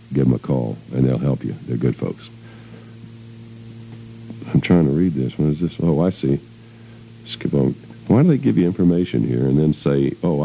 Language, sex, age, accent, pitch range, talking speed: English, male, 50-69, American, 70-115 Hz, 200 wpm